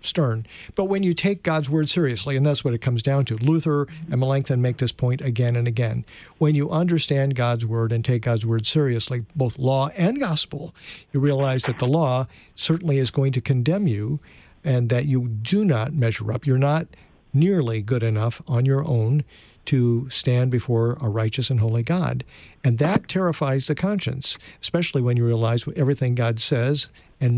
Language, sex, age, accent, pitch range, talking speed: English, male, 50-69, American, 120-150 Hz, 190 wpm